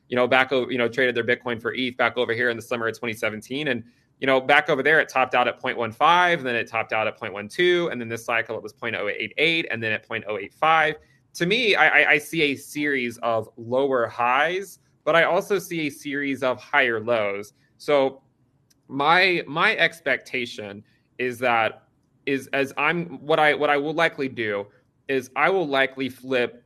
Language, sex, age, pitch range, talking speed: English, male, 30-49, 120-145 Hz, 195 wpm